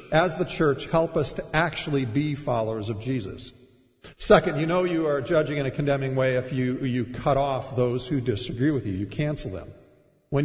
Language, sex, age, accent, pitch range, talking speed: English, male, 50-69, American, 140-180 Hz, 200 wpm